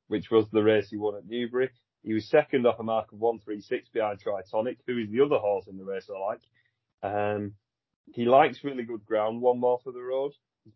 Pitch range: 105-125 Hz